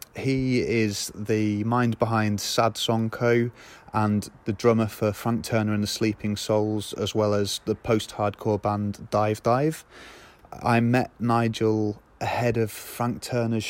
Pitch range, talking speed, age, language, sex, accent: 105-120 Hz, 150 wpm, 30-49, English, male, British